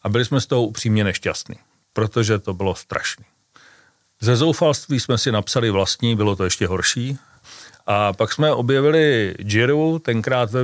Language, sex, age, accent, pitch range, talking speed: Czech, male, 40-59, native, 105-135 Hz, 160 wpm